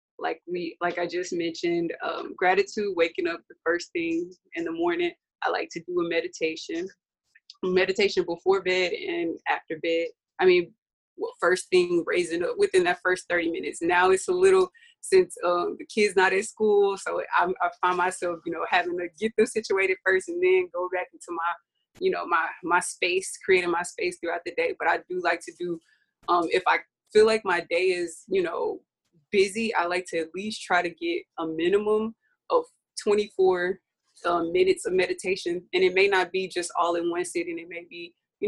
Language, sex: English, female